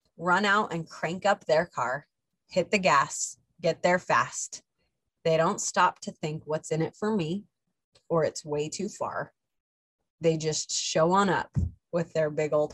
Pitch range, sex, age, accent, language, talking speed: 155-195 Hz, female, 20-39, American, English, 175 wpm